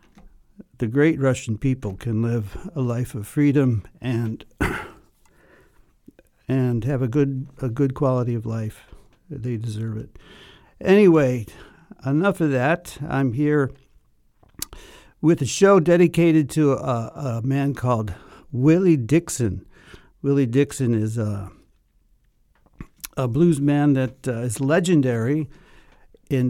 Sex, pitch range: male, 120-145 Hz